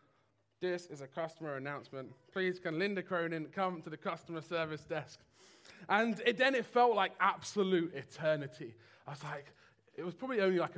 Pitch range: 165-210 Hz